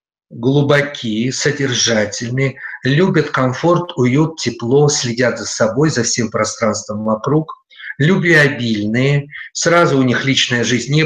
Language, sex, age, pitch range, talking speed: Russian, male, 50-69, 120-145 Hz, 110 wpm